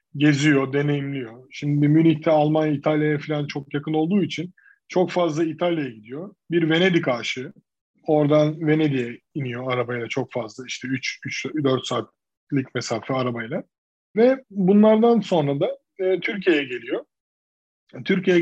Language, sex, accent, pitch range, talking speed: Turkish, male, native, 140-185 Hz, 120 wpm